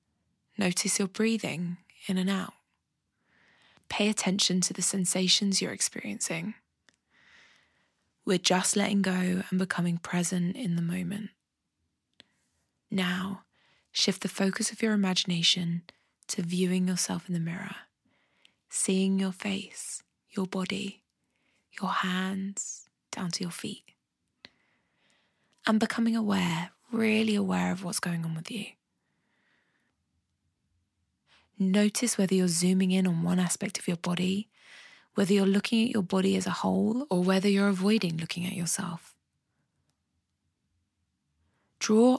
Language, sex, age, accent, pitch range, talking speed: English, female, 20-39, British, 175-200 Hz, 120 wpm